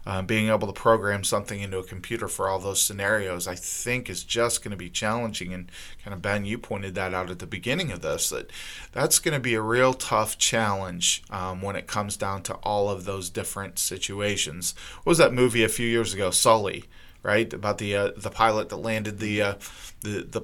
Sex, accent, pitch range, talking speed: male, American, 95-110 Hz, 220 wpm